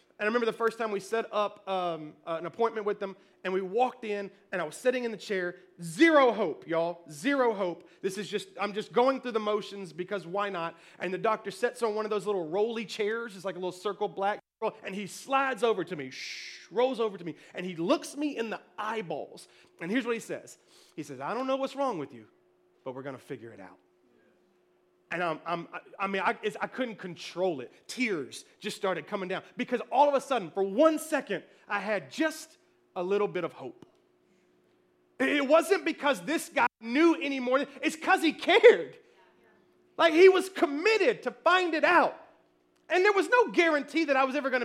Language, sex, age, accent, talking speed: English, male, 30-49, American, 210 wpm